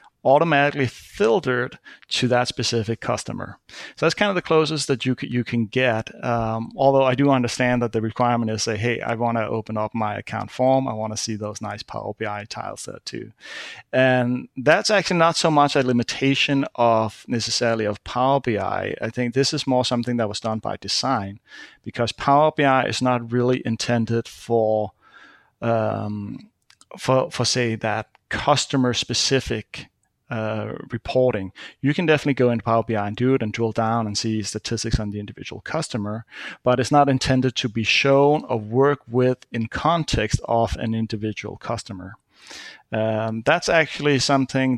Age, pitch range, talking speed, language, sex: 30-49, 110-135 Hz, 170 wpm, English, male